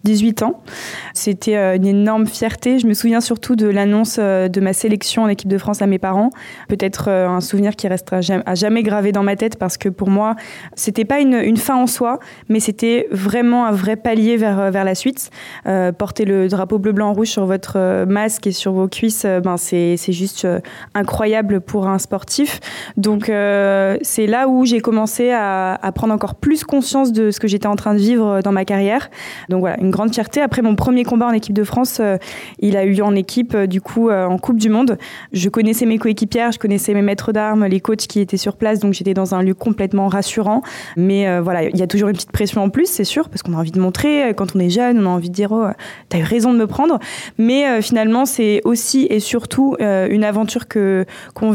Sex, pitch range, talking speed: female, 195-225 Hz, 225 wpm